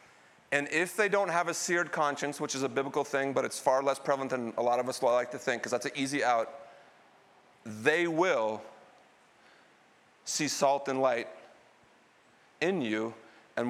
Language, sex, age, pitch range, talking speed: English, male, 40-59, 135-180 Hz, 175 wpm